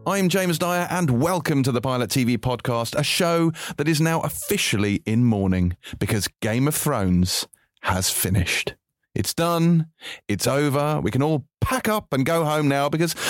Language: English